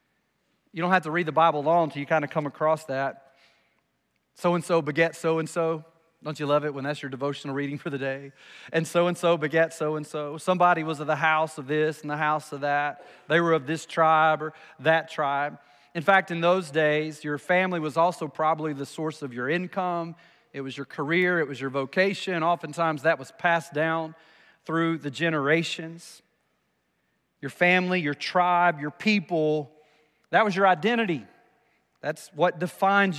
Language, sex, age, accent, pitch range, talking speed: English, male, 30-49, American, 150-180 Hz, 180 wpm